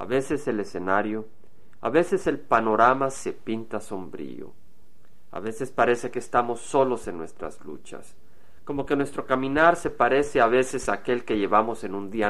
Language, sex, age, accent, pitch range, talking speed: Spanish, male, 40-59, Mexican, 105-135 Hz, 170 wpm